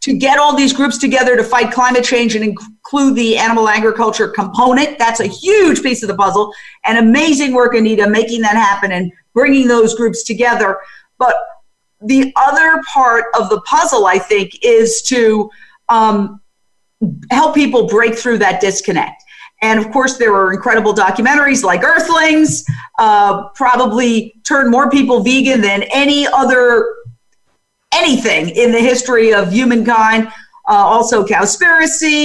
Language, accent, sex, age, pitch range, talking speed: English, American, female, 50-69, 220-280 Hz, 150 wpm